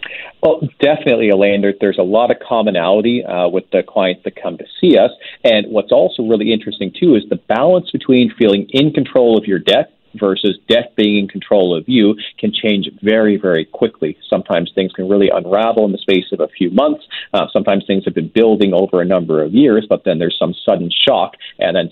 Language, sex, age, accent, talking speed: English, male, 40-59, American, 210 wpm